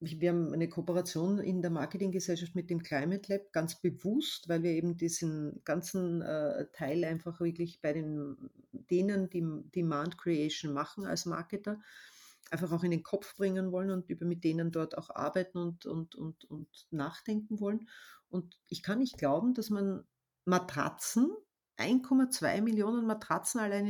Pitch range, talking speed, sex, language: 170-220 Hz, 155 wpm, female, English